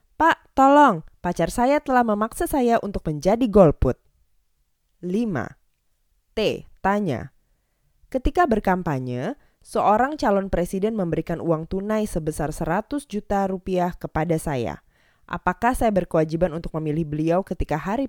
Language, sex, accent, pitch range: Indonesian, female, native, 150-210 Hz